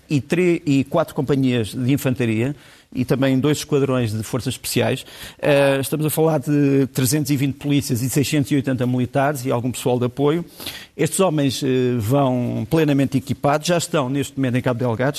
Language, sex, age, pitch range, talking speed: Portuguese, male, 50-69, 130-155 Hz, 155 wpm